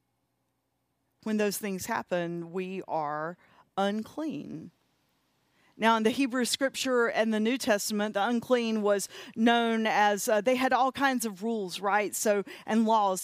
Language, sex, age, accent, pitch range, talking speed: English, female, 40-59, American, 195-235 Hz, 145 wpm